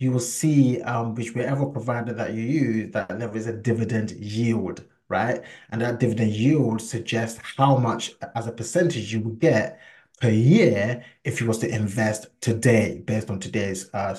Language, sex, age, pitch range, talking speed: English, male, 20-39, 115-150 Hz, 180 wpm